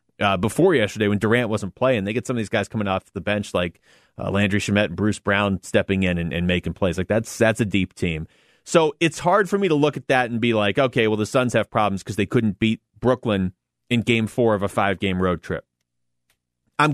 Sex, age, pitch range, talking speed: male, 30-49, 95-130 Hz, 240 wpm